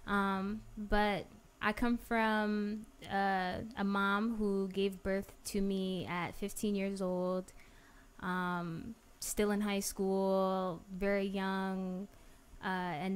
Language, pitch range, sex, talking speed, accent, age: English, 185-215 Hz, female, 120 wpm, American, 10-29